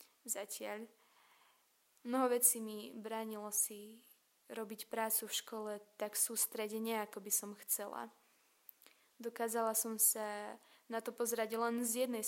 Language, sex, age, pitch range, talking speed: Slovak, female, 20-39, 215-235 Hz, 120 wpm